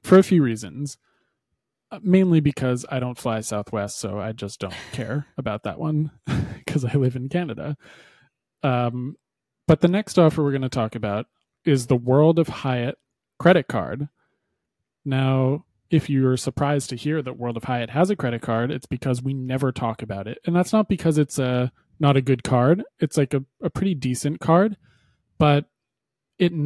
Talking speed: 180 wpm